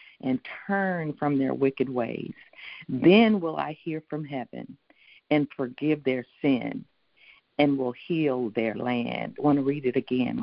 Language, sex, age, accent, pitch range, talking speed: English, female, 50-69, American, 130-160 Hz, 155 wpm